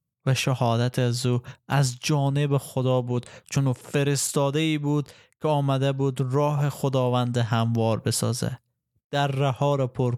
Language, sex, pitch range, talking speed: Persian, male, 125-150 Hz, 135 wpm